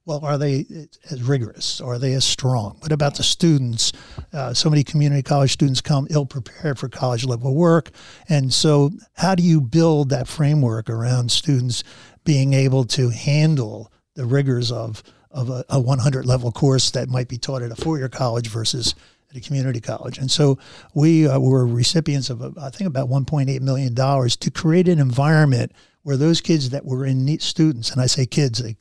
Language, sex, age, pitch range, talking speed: English, male, 50-69, 125-150 Hz, 195 wpm